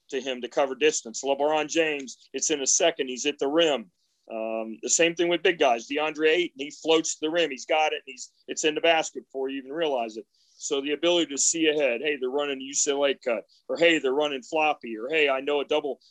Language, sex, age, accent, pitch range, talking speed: English, male, 40-59, American, 130-165 Hz, 245 wpm